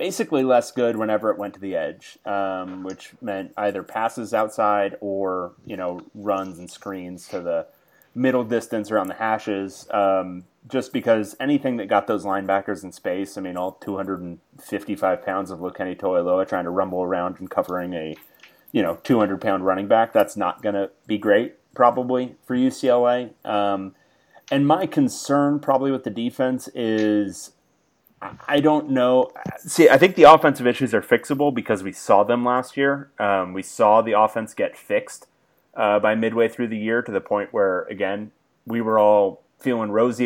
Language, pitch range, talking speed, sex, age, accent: English, 95-125 Hz, 175 wpm, male, 30-49, American